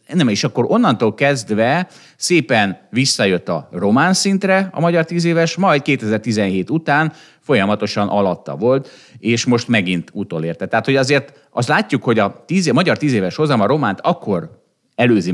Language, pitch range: Hungarian, 100-145 Hz